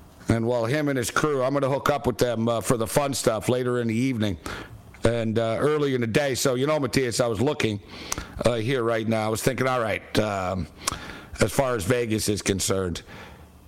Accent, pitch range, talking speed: American, 110-145 Hz, 225 wpm